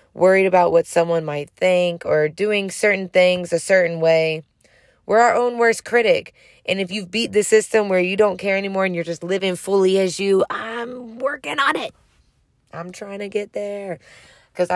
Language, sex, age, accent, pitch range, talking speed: English, female, 20-39, American, 165-205 Hz, 185 wpm